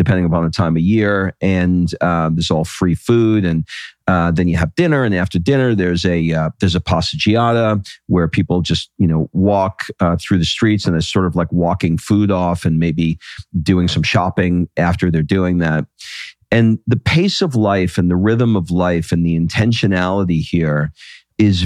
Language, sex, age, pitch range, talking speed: English, male, 40-59, 90-110 Hz, 190 wpm